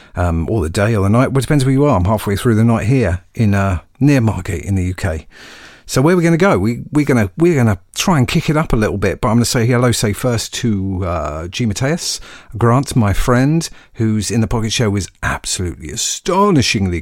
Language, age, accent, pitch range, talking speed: English, 50-69, British, 95-120 Hz, 235 wpm